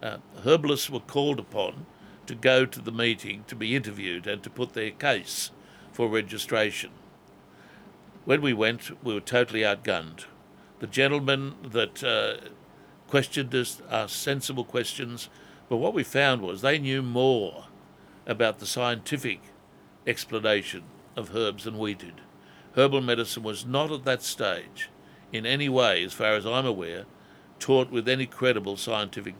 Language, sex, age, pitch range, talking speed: English, male, 60-79, 110-130 Hz, 150 wpm